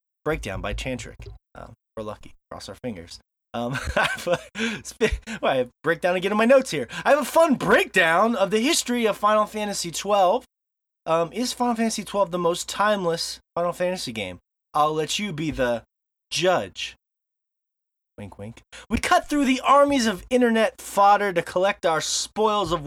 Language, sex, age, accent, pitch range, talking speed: English, male, 30-49, American, 140-210 Hz, 175 wpm